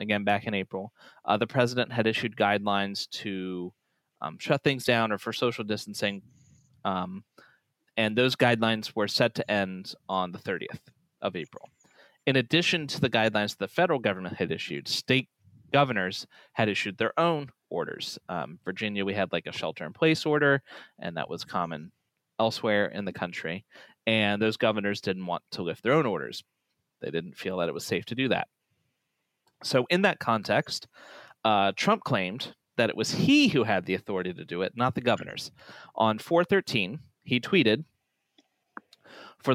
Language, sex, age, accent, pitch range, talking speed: English, male, 30-49, American, 105-145 Hz, 175 wpm